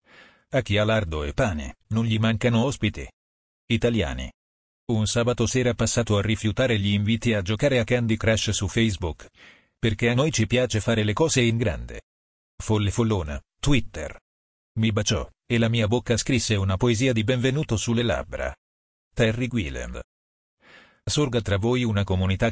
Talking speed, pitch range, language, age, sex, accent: 155 wpm, 95-120 Hz, Italian, 40-59, male, native